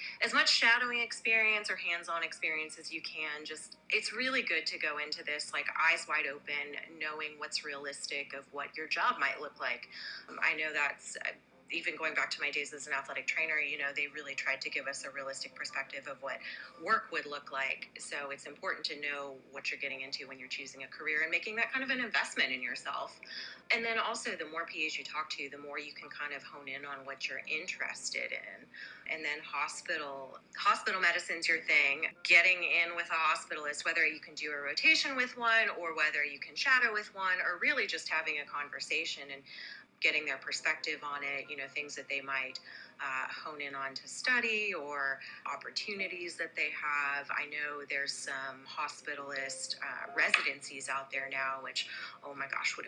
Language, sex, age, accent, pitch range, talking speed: English, female, 30-49, American, 140-170 Hz, 205 wpm